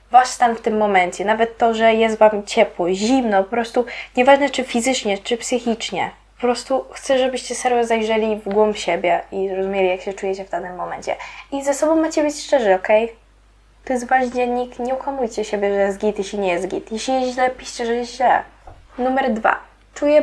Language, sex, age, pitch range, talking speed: Polish, female, 10-29, 215-270 Hz, 200 wpm